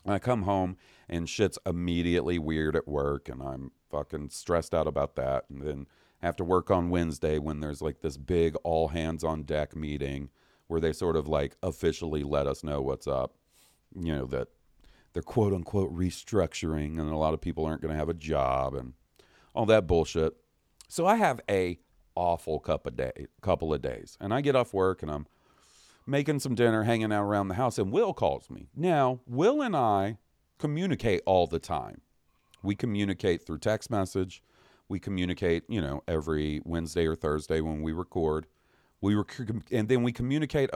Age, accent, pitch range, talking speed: 40-59, American, 75-100 Hz, 185 wpm